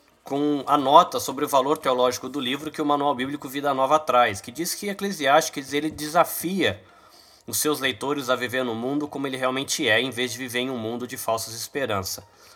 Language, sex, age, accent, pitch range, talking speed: Portuguese, male, 20-39, Brazilian, 125-160 Hz, 205 wpm